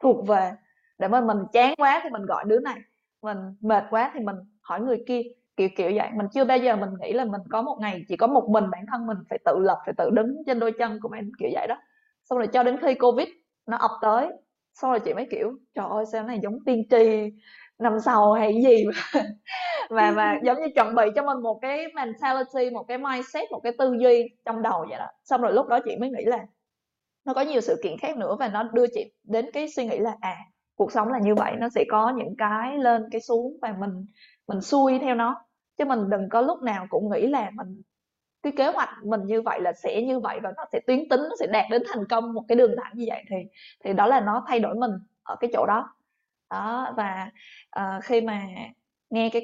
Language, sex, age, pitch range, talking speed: Vietnamese, female, 20-39, 215-255 Hz, 245 wpm